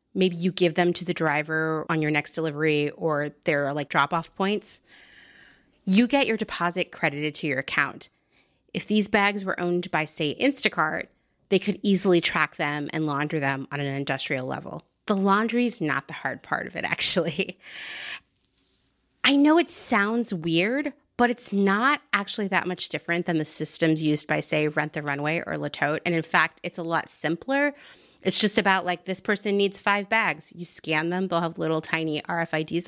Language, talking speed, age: English, 190 wpm, 30-49